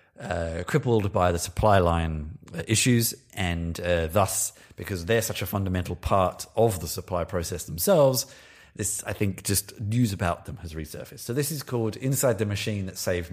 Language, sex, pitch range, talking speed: English, male, 90-115 Hz, 180 wpm